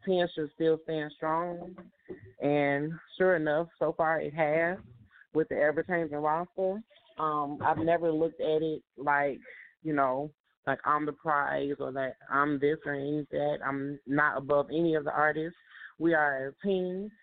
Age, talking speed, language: 20-39, 165 wpm, English